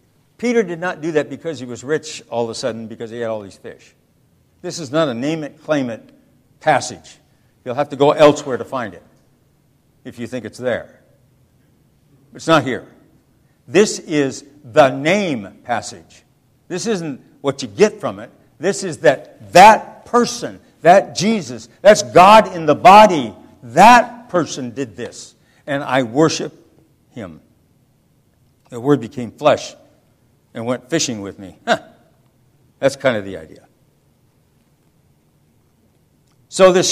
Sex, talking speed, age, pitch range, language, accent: male, 150 wpm, 60-79, 125-165 Hz, English, American